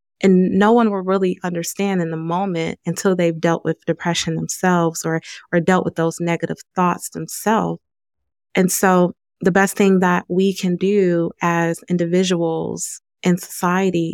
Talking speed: 155 wpm